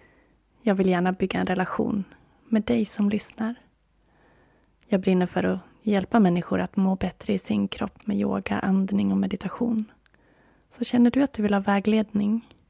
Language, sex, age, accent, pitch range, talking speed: Swedish, female, 20-39, native, 175-225 Hz, 165 wpm